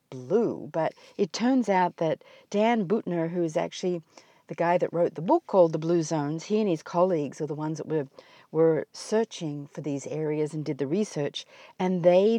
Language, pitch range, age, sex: English, 160-225 Hz, 50-69, female